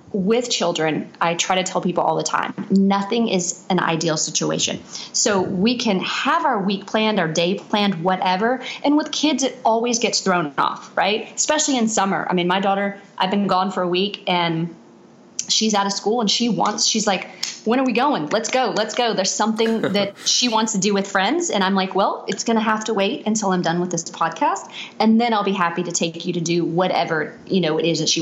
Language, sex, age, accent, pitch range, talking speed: English, female, 30-49, American, 180-230 Hz, 230 wpm